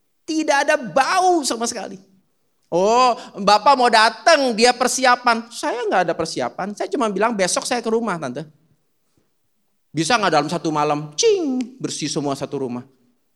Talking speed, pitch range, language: 150 wpm, 185-305 Hz, Indonesian